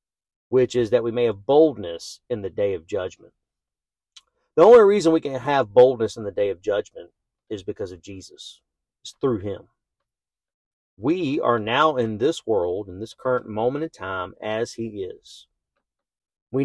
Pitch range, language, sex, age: 105-170 Hz, English, male, 40-59